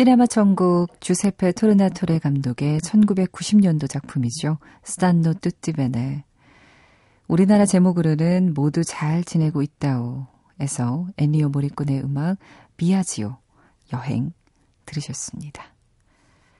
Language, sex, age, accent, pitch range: Korean, female, 40-59, native, 135-185 Hz